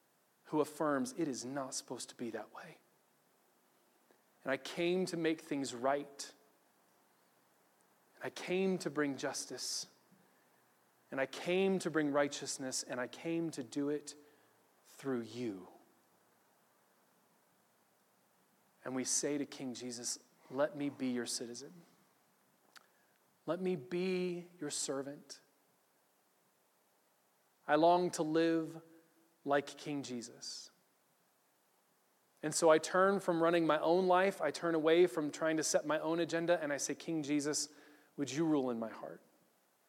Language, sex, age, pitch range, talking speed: English, male, 30-49, 145-185 Hz, 135 wpm